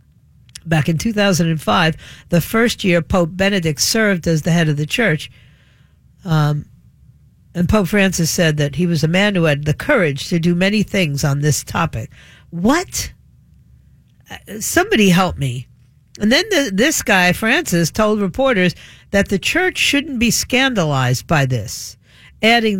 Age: 50-69